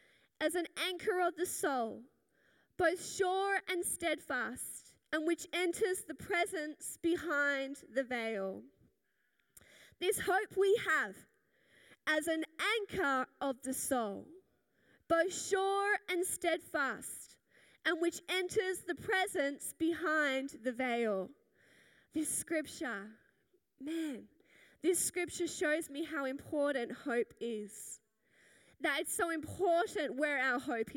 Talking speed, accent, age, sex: 110 wpm, Australian, 10-29, female